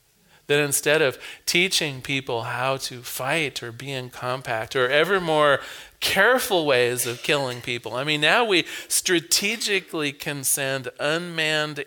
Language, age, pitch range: English, 40-59, 125-165 Hz